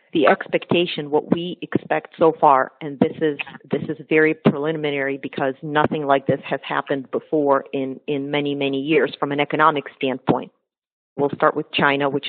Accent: American